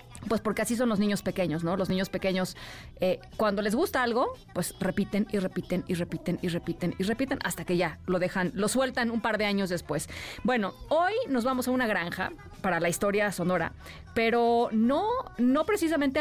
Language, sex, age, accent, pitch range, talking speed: Spanish, female, 30-49, Mexican, 180-235 Hz, 195 wpm